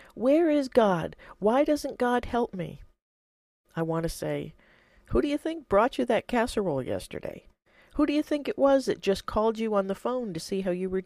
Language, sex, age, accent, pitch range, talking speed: English, female, 40-59, American, 150-220 Hz, 210 wpm